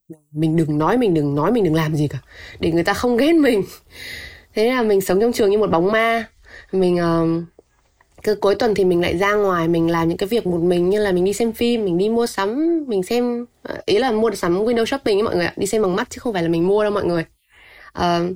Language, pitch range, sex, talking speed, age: Vietnamese, 170-230 Hz, female, 260 wpm, 20-39